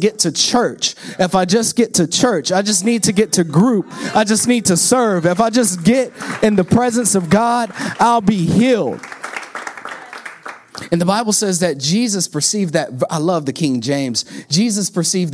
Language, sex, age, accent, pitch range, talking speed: English, male, 30-49, American, 175-250 Hz, 190 wpm